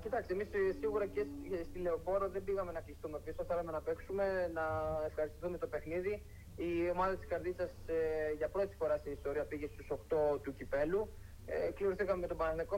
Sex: male